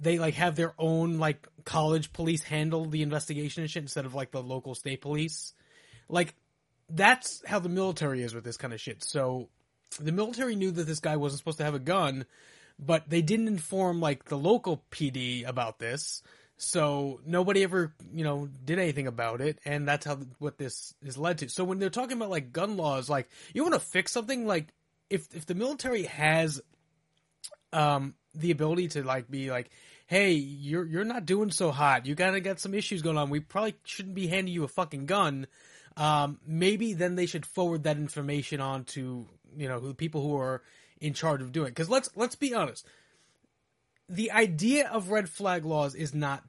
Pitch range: 145-180 Hz